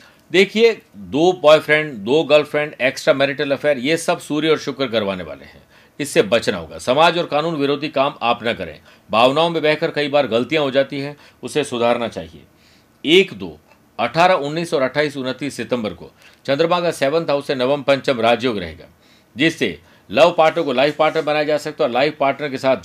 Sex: male